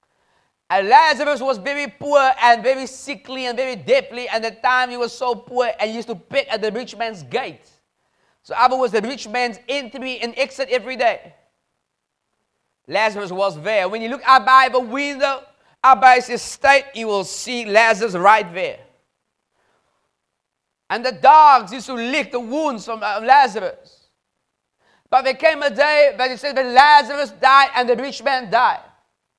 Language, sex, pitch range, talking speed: English, male, 235-285 Hz, 175 wpm